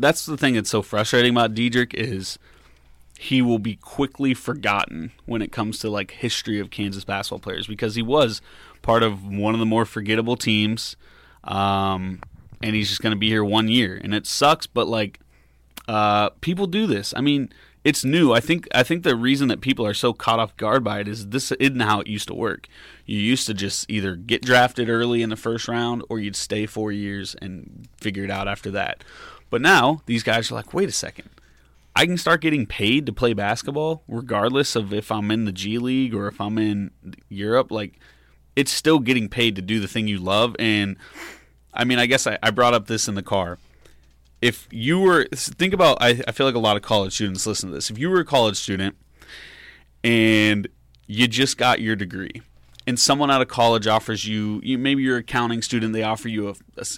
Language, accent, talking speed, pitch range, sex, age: English, American, 215 wpm, 100-120 Hz, male, 30-49